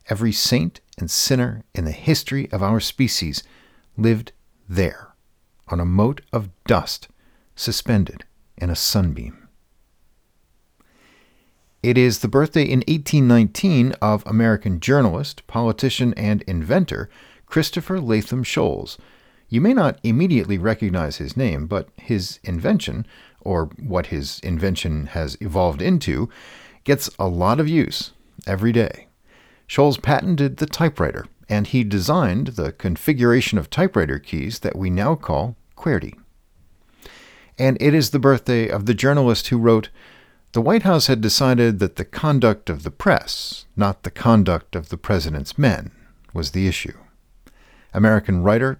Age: 50-69